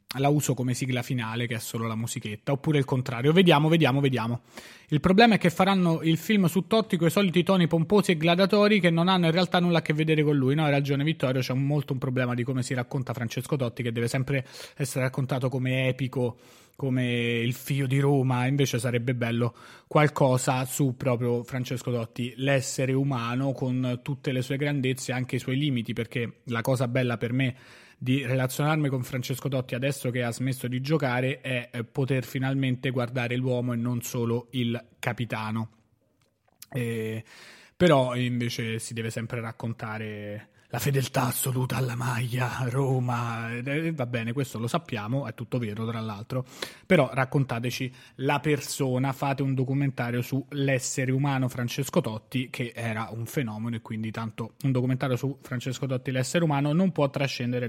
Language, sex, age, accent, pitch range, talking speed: Italian, male, 20-39, native, 120-145 Hz, 175 wpm